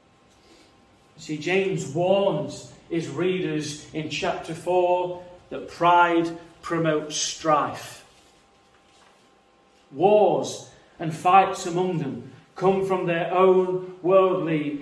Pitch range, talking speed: 135-185 Hz, 90 wpm